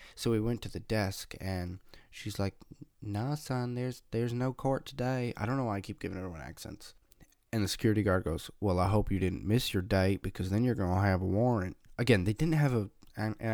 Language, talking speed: English, 230 wpm